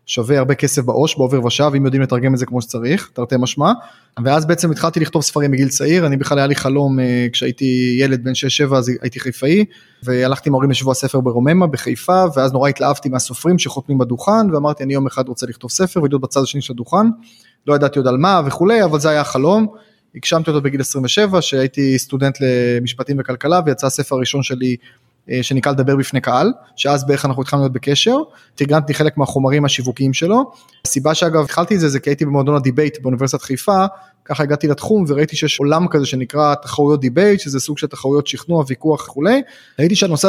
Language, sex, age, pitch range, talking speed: Hebrew, male, 20-39, 135-160 Hz, 185 wpm